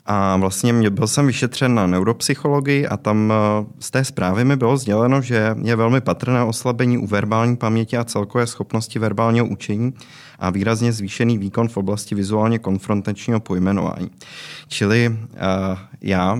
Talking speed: 145 wpm